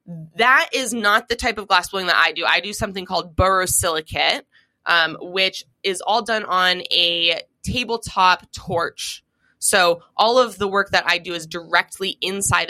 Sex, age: female, 20-39